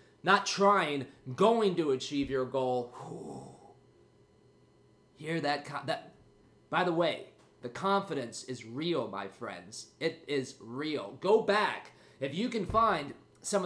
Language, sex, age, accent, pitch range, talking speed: English, male, 30-49, American, 150-220 Hz, 125 wpm